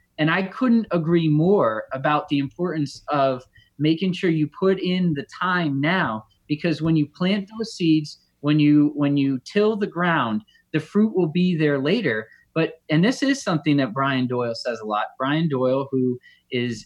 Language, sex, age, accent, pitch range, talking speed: English, male, 20-39, American, 145-185 Hz, 180 wpm